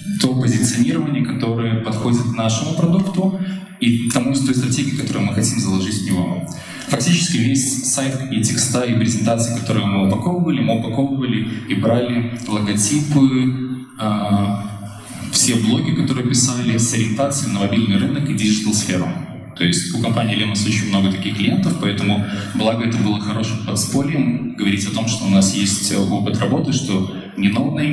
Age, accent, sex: 20-39, native, male